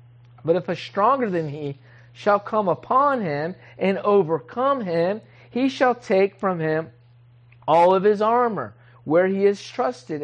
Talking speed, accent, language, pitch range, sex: 150 wpm, American, English, 145-225 Hz, male